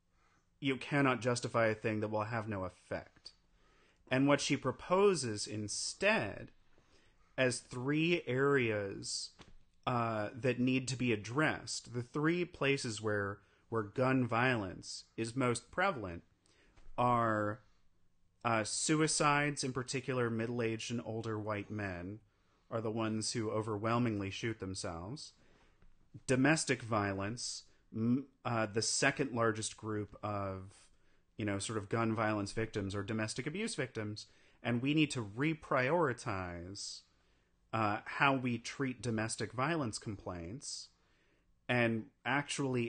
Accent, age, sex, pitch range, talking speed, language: American, 30-49, male, 100-130 Hz, 120 wpm, English